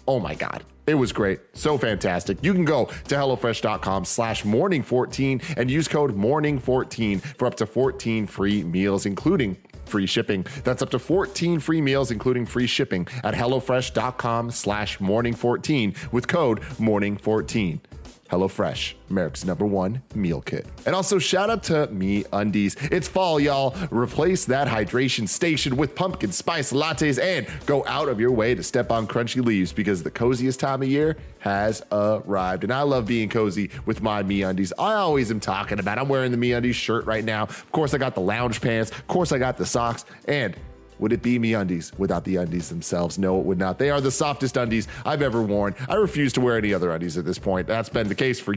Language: English